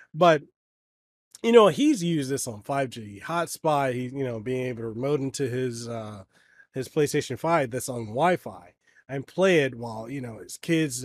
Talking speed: 175 wpm